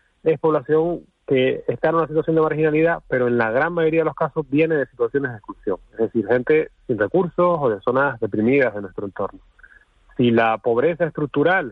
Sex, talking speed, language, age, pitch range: male, 195 wpm, Spanish, 30-49, 125-165 Hz